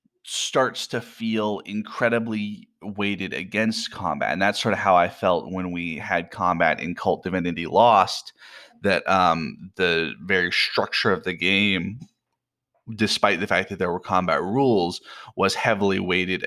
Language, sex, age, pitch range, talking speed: English, male, 20-39, 85-100 Hz, 150 wpm